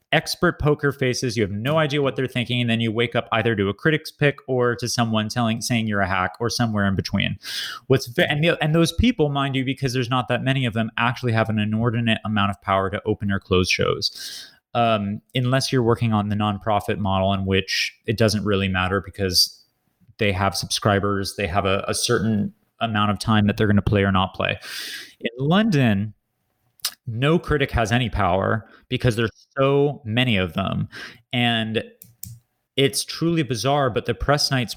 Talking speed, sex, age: 195 wpm, male, 30-49